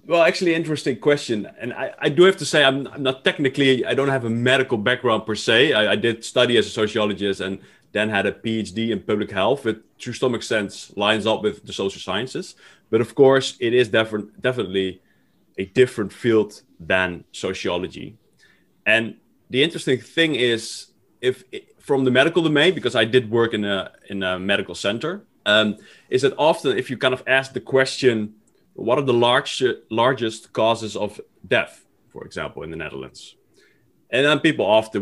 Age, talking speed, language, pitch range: 20-39, 185 wpm, English, 100-130 Hz